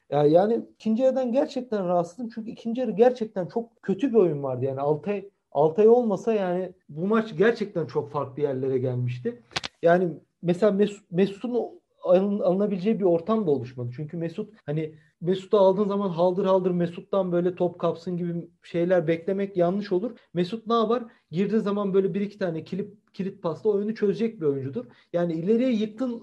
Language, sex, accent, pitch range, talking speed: Turkish, male, native, 160-215 Hz, 165 wpm